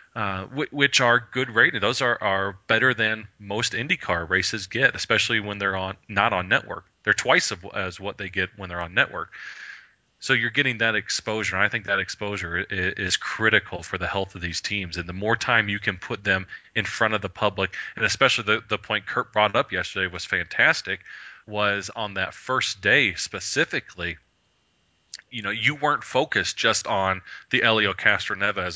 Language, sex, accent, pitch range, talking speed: English, male, American, 95-115 Hz, 185 wpm